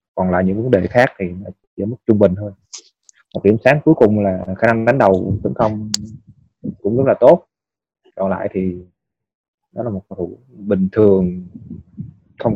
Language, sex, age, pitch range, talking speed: Vietnamese, male, 20-39, 95-110 Hz, 185 wpm